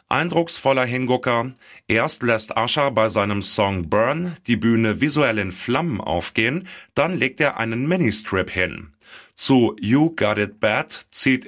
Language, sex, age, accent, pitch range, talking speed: German, male, 30-49, German, 105-130 Hz, 140 wpm